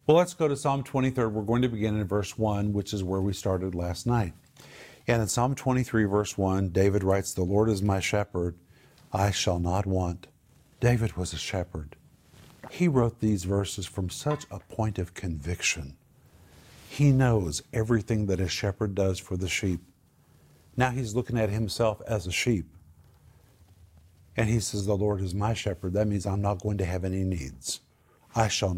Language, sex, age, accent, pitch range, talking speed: English, male, 50-69, American, 100-130 Hz, 185 wpm